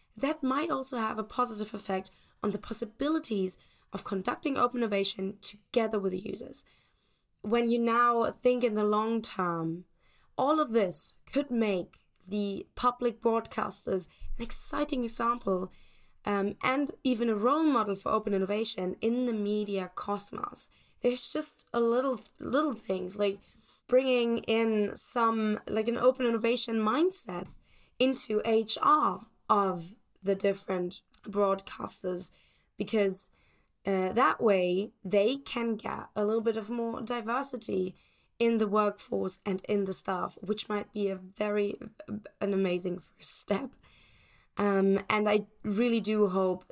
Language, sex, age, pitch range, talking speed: English, female, 10-29, 195-235 Hz, 135 wpm